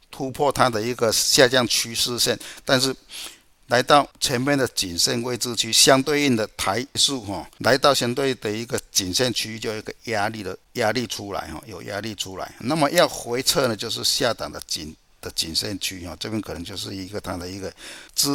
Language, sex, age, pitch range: Chinese, male, 60-79, 100-135 Hz